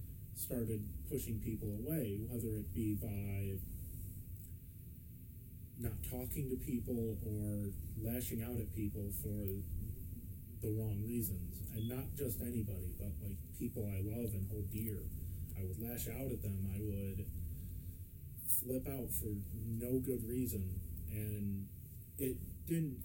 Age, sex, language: 30-49, male, English